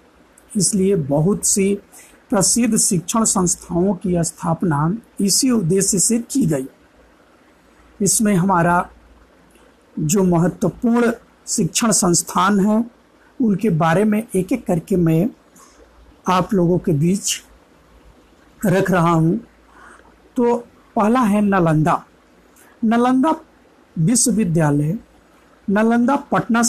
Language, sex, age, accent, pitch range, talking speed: Hindi, male, 50-69, native, 180-230 Hz, 95 wpm